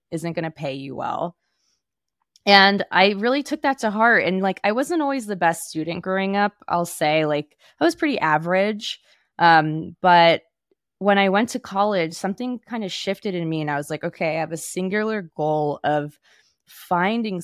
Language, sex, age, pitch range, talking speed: English, female, 20-39, 160-195 Hz, 190 wpm